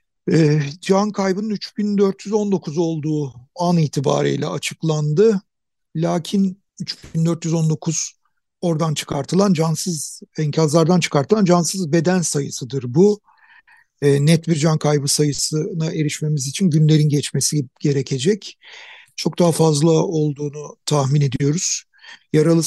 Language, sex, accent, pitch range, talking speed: Turkish, male, native, 150-190 Hz, 95 wpm